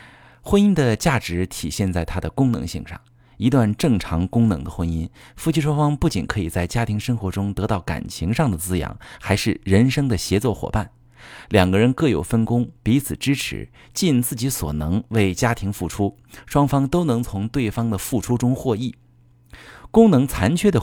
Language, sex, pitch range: Chinese, male, 90-130 Hz